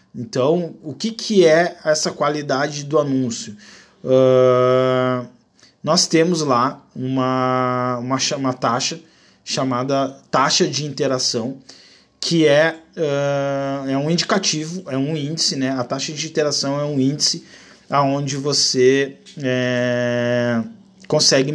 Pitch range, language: 130-160 Hz, Portuguese